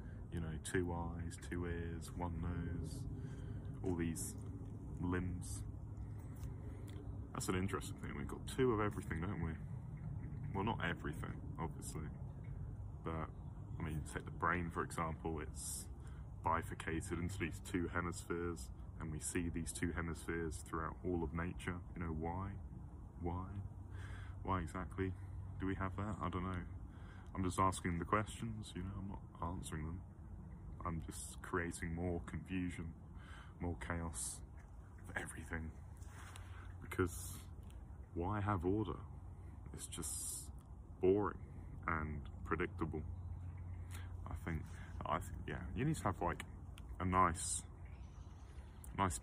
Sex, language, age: male, English, 20-39